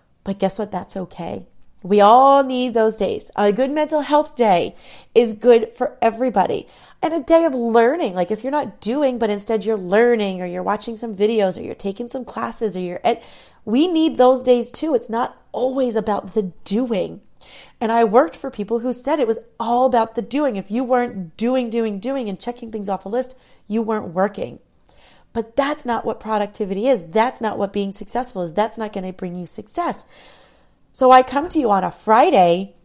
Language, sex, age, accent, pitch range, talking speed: English, female, 30-49, American, 200-250 Hz, 205 wpm